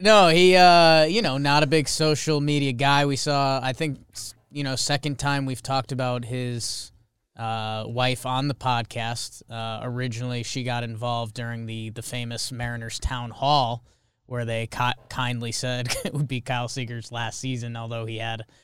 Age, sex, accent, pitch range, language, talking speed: 20-39, male, American, 120-155 Hz, English, 175 wpm